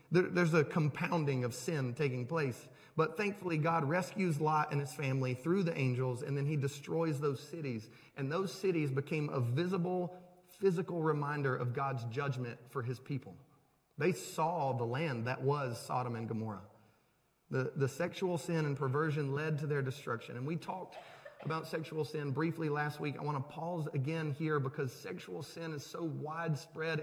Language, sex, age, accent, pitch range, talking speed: English, male, 30-49, American, 135-170 Hz, 175 wpm